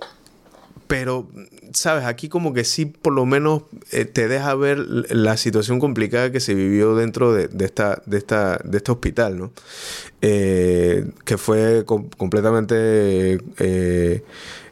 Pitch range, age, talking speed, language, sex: 100-125 Hz, 20-39, 145 wpm, Spanish, male